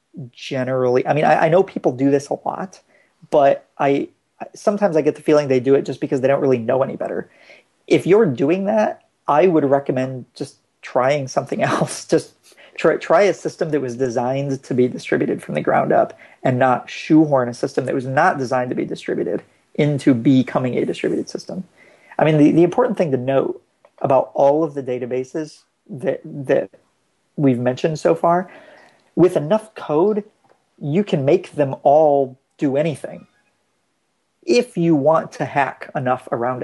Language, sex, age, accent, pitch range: Chinese, male, 40-59, American, 130-155 Hz